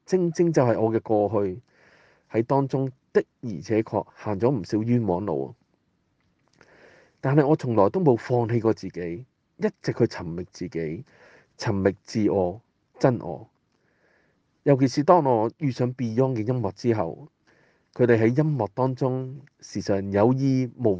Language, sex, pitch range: Chinese, male, 100-140 Hz